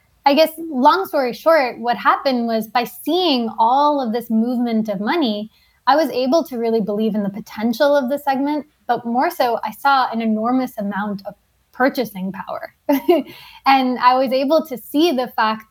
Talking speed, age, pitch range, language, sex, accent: 180 wpm, 10-29, 215-270 Hz, English, female, American